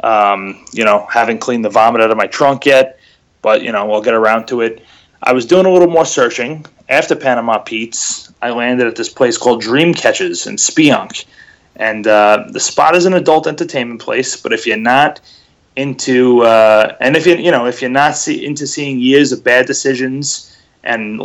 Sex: male